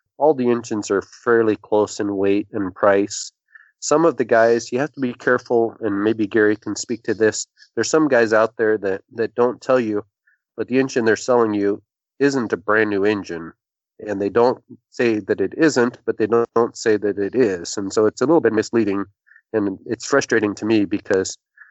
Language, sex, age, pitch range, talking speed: English, male, 30-49, 105-140 Hz, 205 wpm